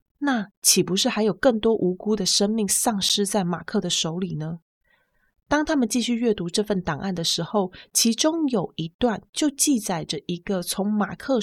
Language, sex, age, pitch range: Chinese, female, 20-39, 180-240 Hz